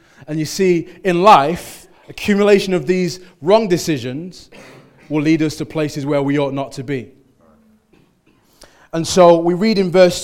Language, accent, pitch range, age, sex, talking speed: English, British, 150-185 Hz, 20-39, male, 160 wpm